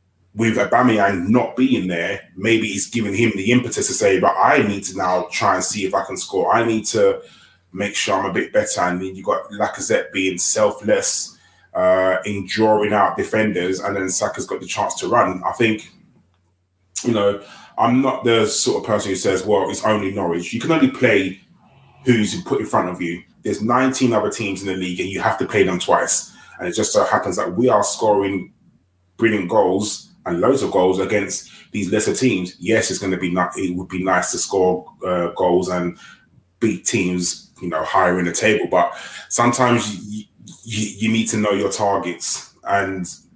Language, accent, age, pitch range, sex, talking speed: English, British, 20-39, 95-115 Hz, male, 205 wpm